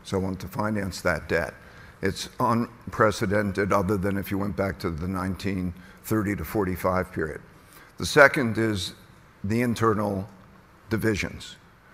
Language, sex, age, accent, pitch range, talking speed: English, male, 60-79, American, 95-110 Hz, 135 wpm